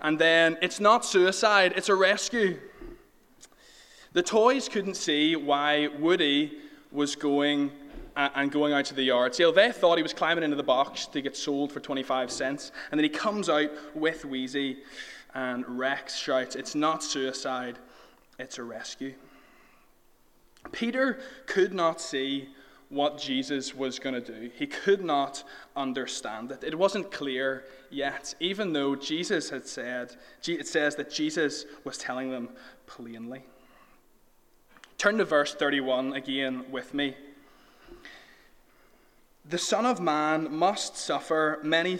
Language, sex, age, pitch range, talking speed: English, male, 20-39, 135-175 Hz, 140 wpm